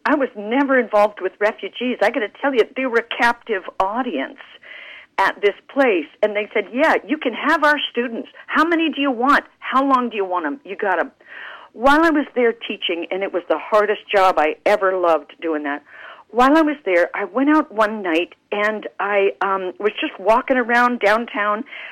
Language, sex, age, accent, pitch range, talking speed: English, female, 50-69, American, 205-275 Hz, 205 wpm